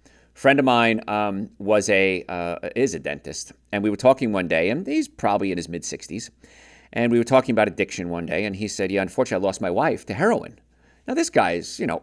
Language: English